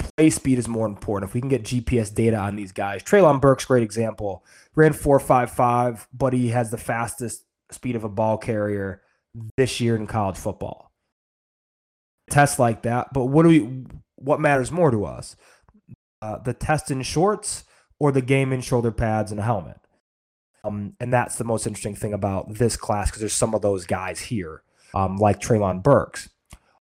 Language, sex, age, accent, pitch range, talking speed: English, male, 20-39, American, 105-135 Hz, 185 wpm